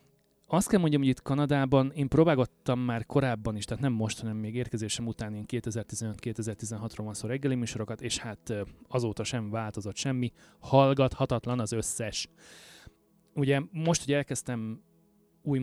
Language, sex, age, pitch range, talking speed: Hungarian, male, 30-49, 110-135 Hz, 140 wpm